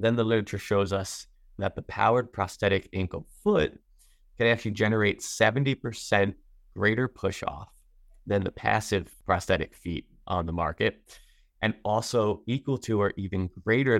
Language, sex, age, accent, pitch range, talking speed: English, male, 30-49, American, 95-110 Hz, 140 wpm